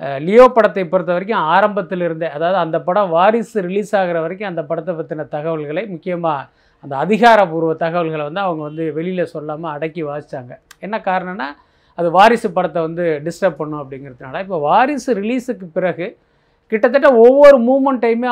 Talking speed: 145 wpm